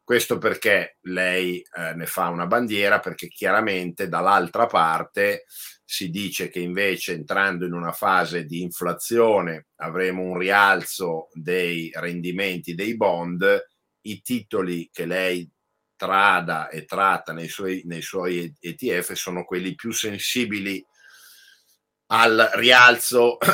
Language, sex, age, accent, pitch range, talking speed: Italian, male, 50-69, native, 90-115 Hz, 115 wpm